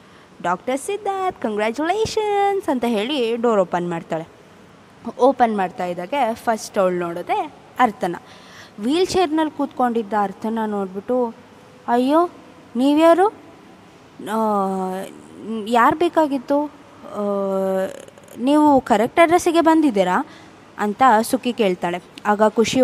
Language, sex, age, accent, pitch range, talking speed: Kannada, female, 20-39, native, 190-240 Hz, 80 wpm